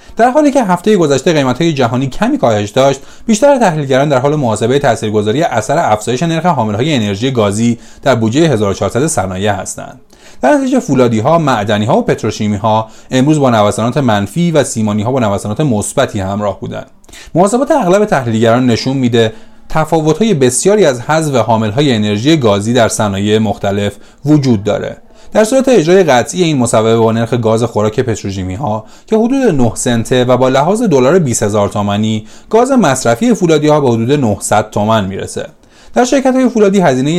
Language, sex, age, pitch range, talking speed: Persian, male, 30-49, 110-155 Hz, 155 wpm